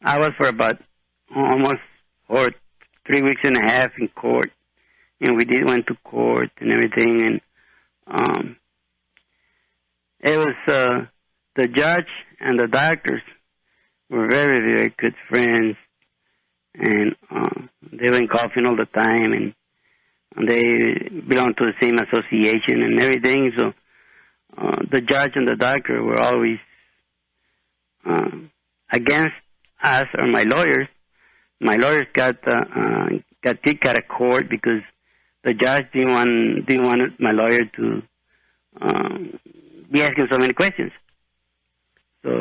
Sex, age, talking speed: male, 60-79, 140 wpm